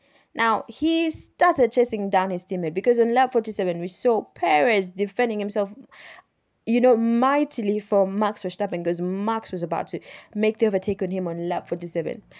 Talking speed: 170 wpm